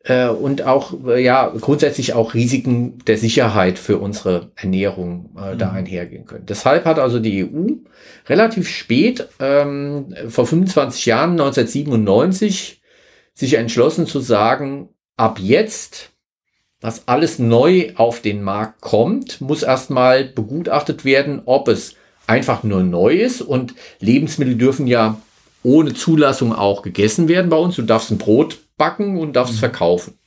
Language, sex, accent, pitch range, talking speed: German, male, German, 110-150 Hz, 140 wpm